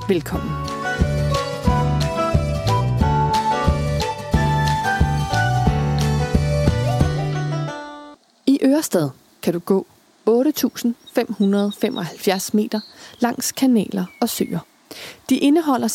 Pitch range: 165-245 Hz